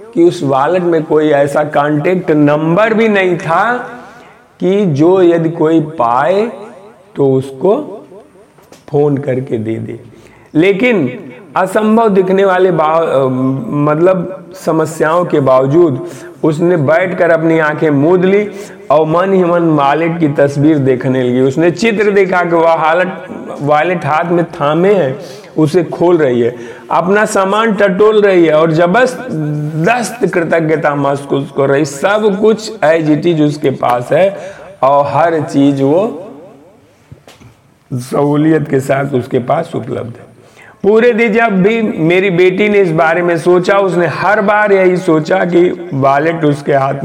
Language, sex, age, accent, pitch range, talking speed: Hindi, male, 50-69, native, 140-190 Hz, 135 wpm